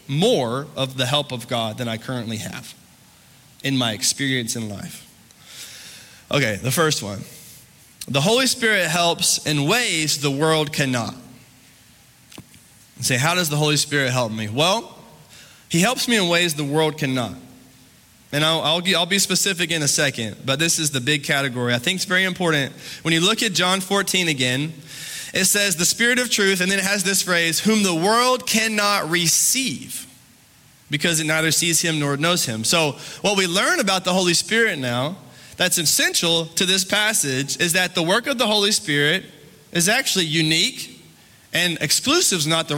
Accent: American